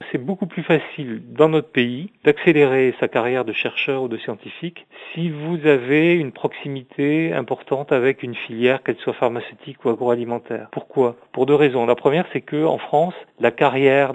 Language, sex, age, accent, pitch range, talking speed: French, male, 40-59, French, 115-150 Hz, 175 wpm